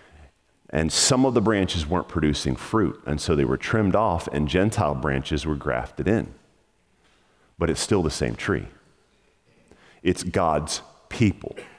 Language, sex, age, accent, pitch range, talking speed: English, male, 40-59, American, 75-100 Hz, 150 wpm